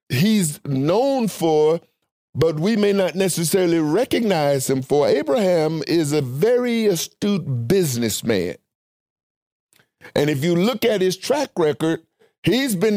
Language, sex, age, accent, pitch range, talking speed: English, male, 50-69, American, 165-220 Hz, 125 wpm